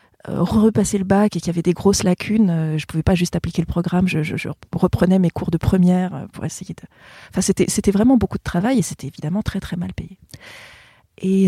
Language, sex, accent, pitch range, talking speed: French, female, French, 175-210 Hz, 230 wpm